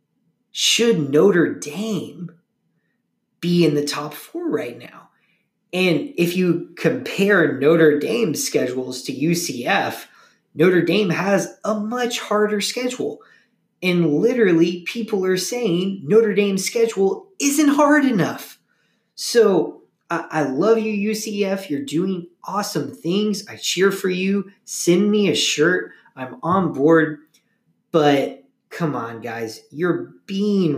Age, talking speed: 30-49, 125 wpm